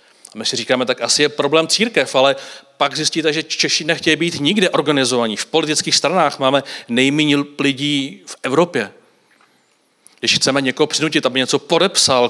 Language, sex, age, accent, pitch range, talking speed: Czech, male, 40-59, native, 120-150 Hz, 160 wpm